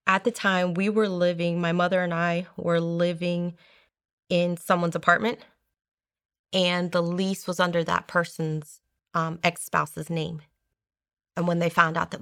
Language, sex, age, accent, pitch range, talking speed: English, female, 30-49, American, 170-190 Hz, 150 wpm